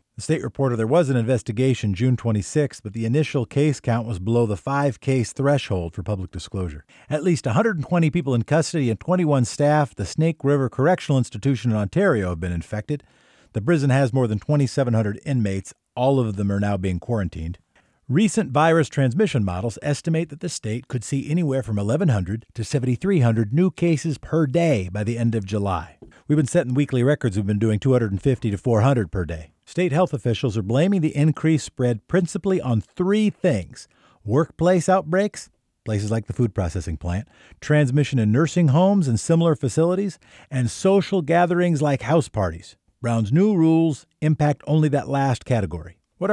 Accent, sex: American, male